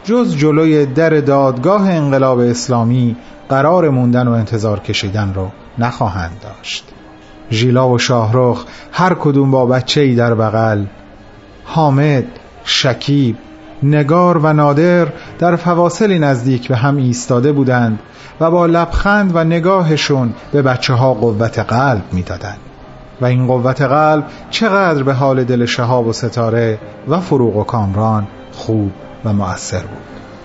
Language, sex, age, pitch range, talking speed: Persian, male, 40-59, 115-160 Hz, 125 wpm